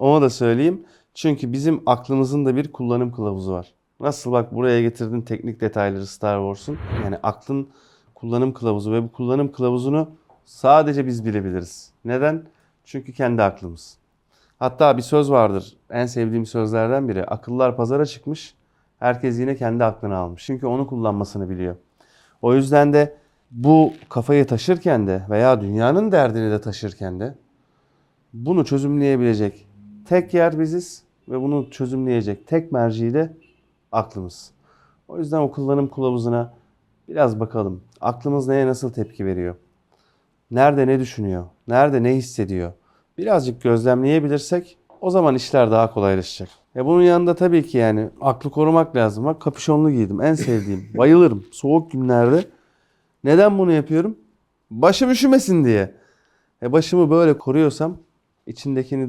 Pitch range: 110-145 Hz